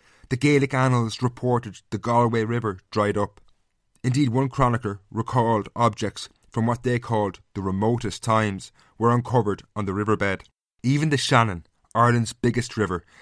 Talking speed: 145 wpm